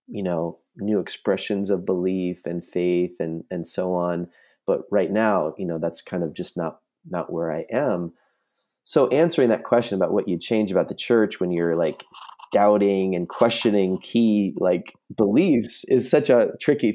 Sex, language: male, English